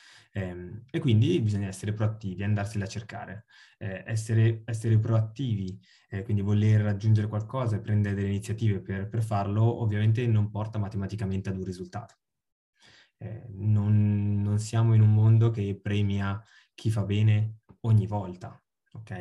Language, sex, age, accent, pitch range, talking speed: Italian, male, 20-39, native, 100-115 Hz, 145 wpm